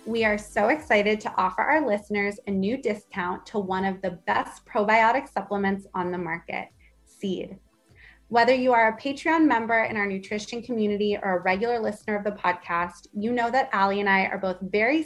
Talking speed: 190 wpm